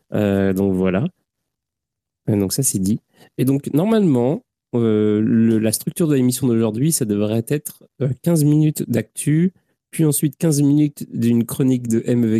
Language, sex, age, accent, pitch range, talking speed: French, male, 30-49, French, 105-140 Hz, 155 wpm